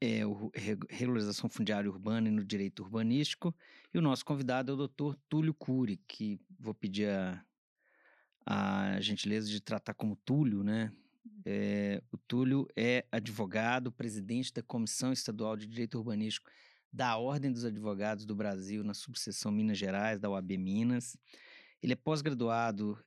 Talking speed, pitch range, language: 150 wpm, 105-130 Hz, Portuguese